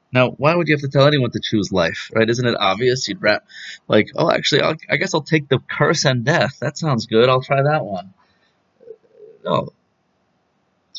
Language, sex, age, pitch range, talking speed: English, male, 30-49, 110-145 Hz, 210 wpm